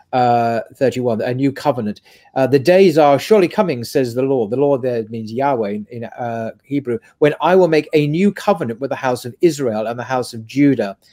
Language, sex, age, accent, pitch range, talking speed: English, male, 40-59, British, 120-155 Hz, 210 wpm